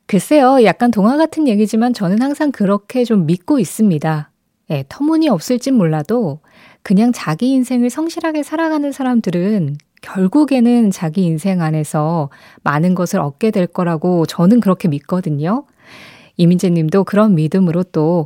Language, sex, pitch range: Korean, female, 170-260 Hz